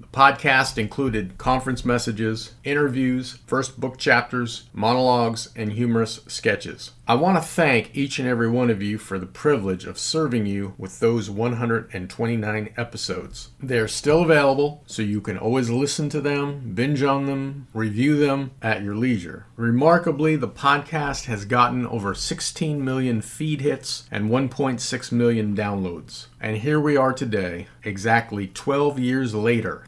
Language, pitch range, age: English, 110-130 Hz, 40-59